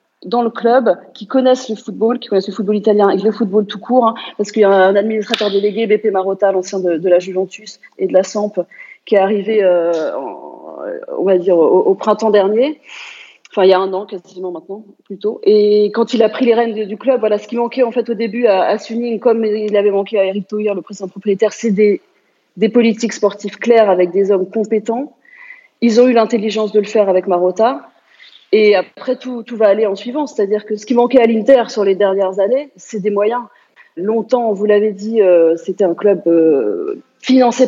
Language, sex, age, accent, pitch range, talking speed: French, female, 30-49, French, 195-235 Hz, 220 wpm